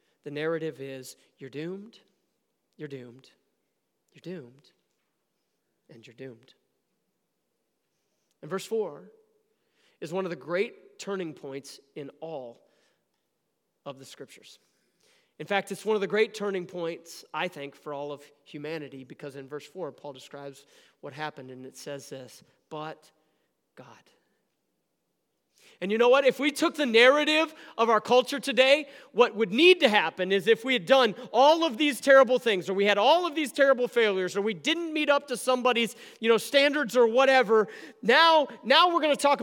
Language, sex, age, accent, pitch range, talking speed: English, male, 40-59, American, 160-270 Hz, 165 wpm